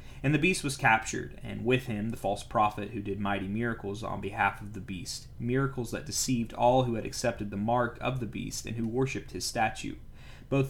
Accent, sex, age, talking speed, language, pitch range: American, male, 30-49, 215 wpm, English, 105-125 Hz